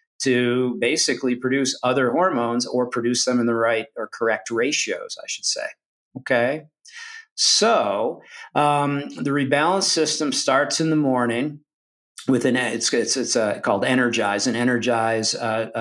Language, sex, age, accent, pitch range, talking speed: English, male, 50-69, American, 120-145 Hz, 145 wpm